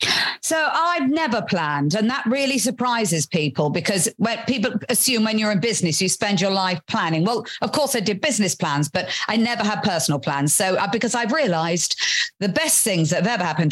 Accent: British